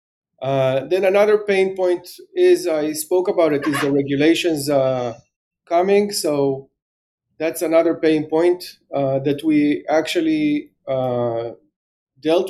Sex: male